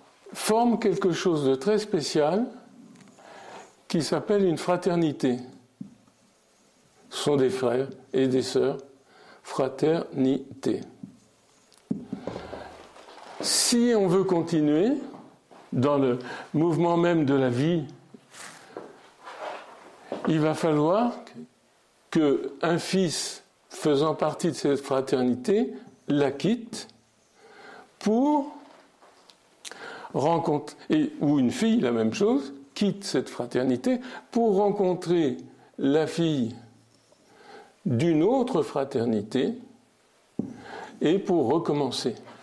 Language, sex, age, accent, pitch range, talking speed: French, male, 60-79, French, 140-205 Hz, 90 wpm